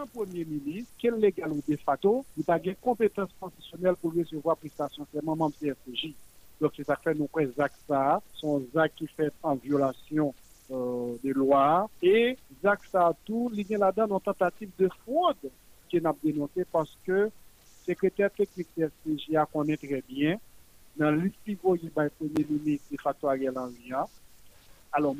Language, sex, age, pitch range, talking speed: French, male, 50-69, 145-195 Hz, 190 wpm